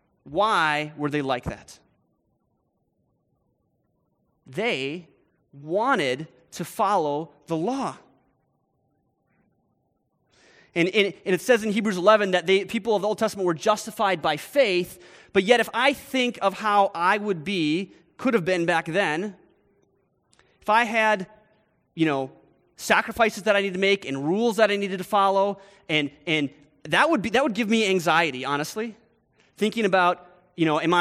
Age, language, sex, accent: 30-49, English, male, American